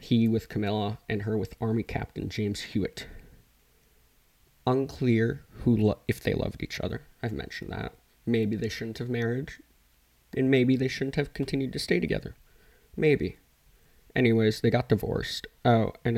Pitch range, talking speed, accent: 105-120 Hz, 155 wpm, American